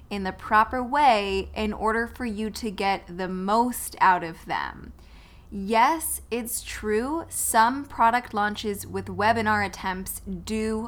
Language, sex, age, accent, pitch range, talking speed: English, female, 10-29, American, 190-235 Hz, 140 wpm